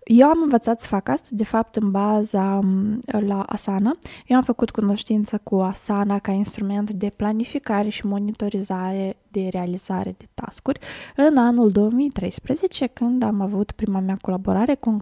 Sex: female